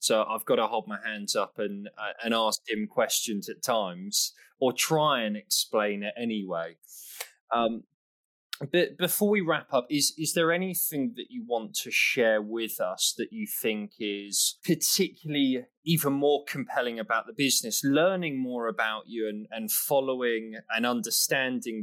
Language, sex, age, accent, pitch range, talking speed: English, male, 20-39, British, 105-150 Hz, 160 wpm